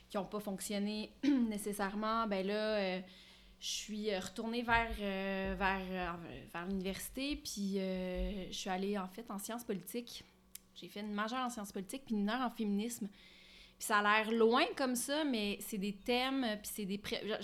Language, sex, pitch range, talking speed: French, female, 195-230 Hz, 185 wpm